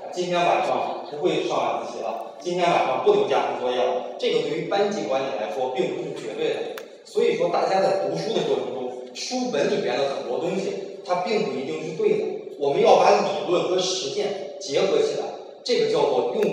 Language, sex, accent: Chinese, male, native